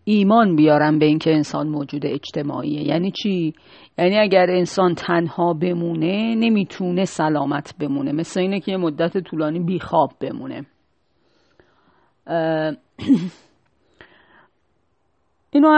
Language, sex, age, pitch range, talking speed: Persian, female, 40-59, 160-235 Hz, 105 wpm